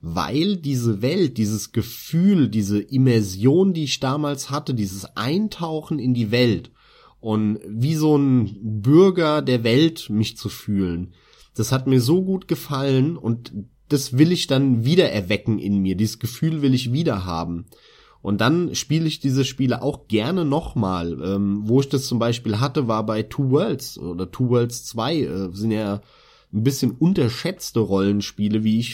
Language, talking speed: German, 165 wpm